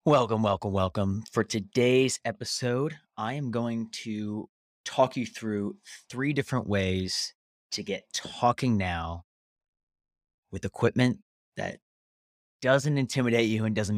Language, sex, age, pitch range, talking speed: English, male, 30-49, 95-120 Hz, 120 wpm